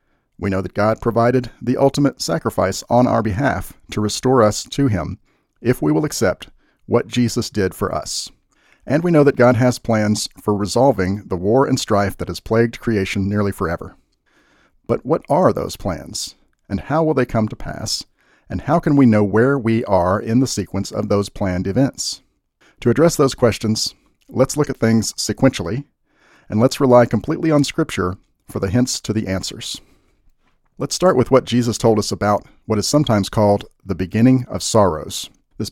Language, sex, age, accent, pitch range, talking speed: English, male, 40-59, American, 100-130 Hz, 185 wpm